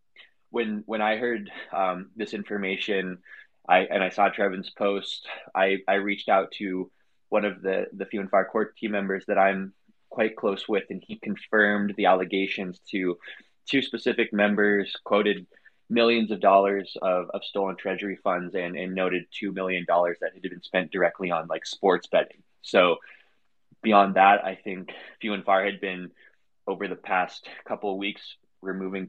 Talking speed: 170 wpm